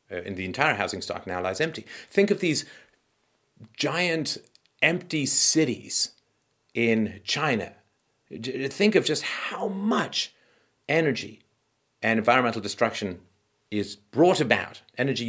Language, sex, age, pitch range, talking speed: English, male, 50-69, 95-130 Hz, 120 wpm